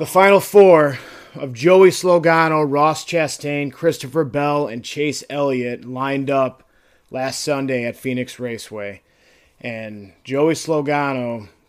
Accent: American